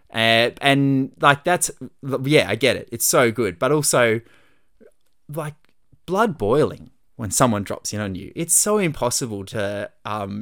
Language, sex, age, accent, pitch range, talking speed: English, male, 20-39, Australian, 110-150 Hz, 155 wpm